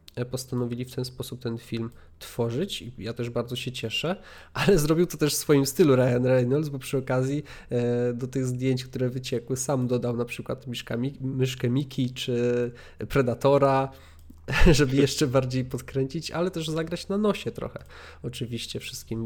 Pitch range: 120-140 Hz